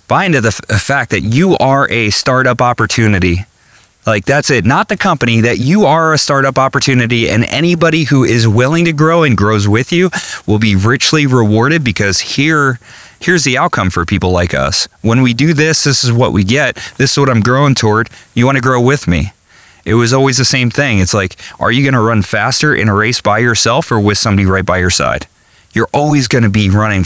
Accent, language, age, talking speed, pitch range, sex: American, English, 30-49, 220 wpm, 95-125 Hz, male